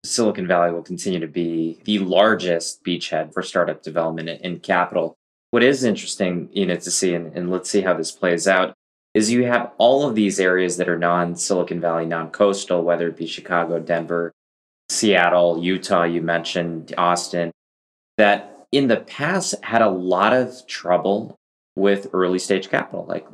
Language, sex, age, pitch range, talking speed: English, male, 20-39, 85-100 Hz, 165 wpm